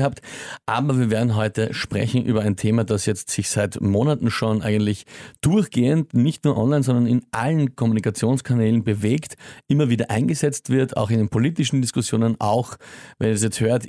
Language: German